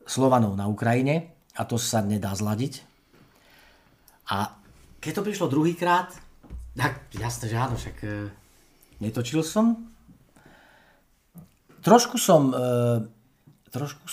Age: 40-59